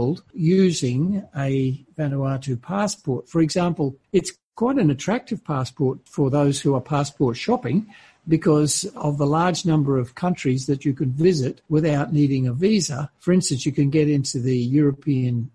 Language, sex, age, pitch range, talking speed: English, male, 60-79, 140-180 Hz, 155 wpm